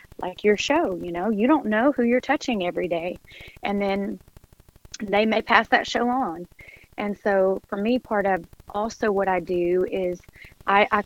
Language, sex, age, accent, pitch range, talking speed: English, female, 30-49, American, 180-220 Hz, 185 wpm